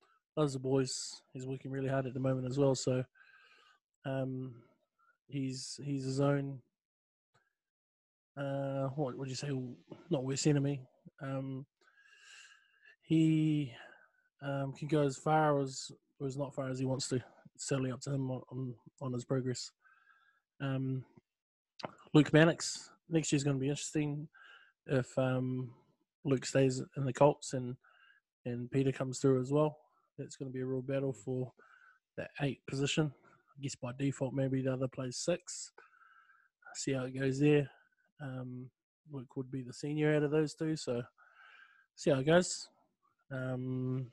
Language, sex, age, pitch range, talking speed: English, male, 20-39, 130-150 Hz, 155 wpm